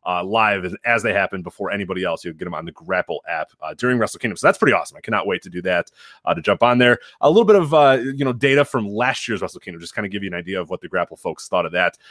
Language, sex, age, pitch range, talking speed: English, male, 30-49, 95-125 Hz, 310 wpm